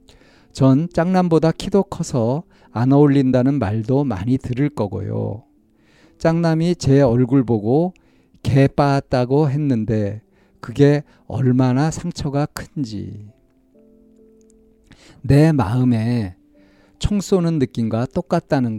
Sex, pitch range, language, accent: male, 110-160 Hz, Korean, native